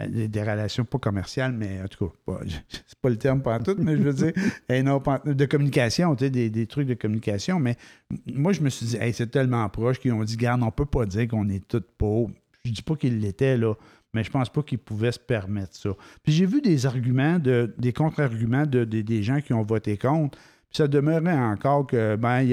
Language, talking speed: French, 225 wpm